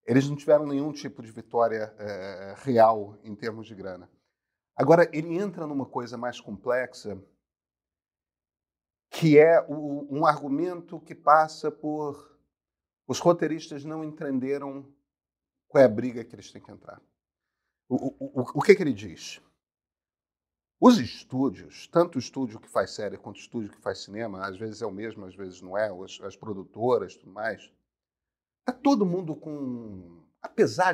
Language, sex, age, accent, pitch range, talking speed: Portuguese, male, 40-59, Brazilian, 110-155 Hz, 165 wpm